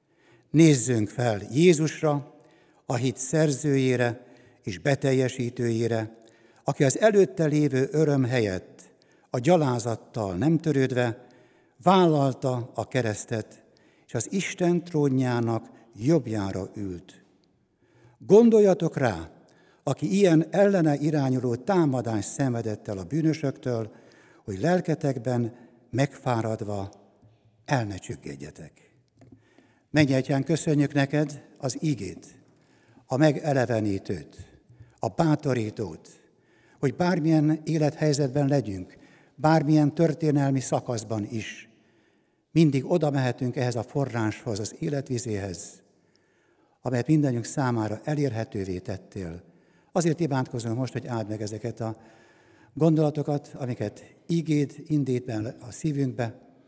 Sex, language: male, Hungarian